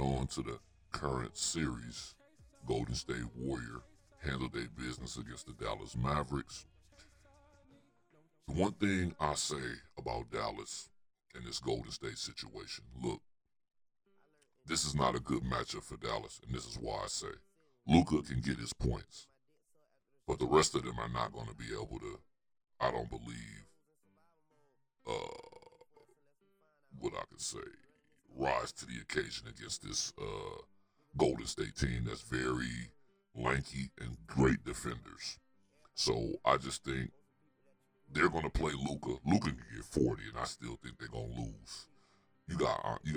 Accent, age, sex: American, 60-79, female